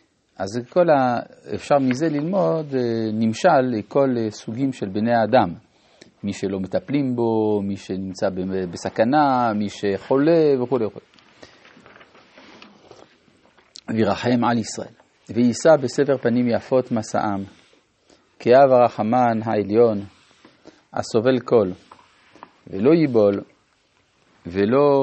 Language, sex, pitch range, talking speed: Hebrew, male, 105-135 Hz, 90 wpm